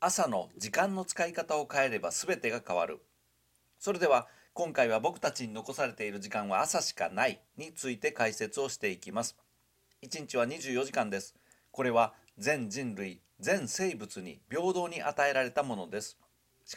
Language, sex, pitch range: Japanese, male, 120-150 Hz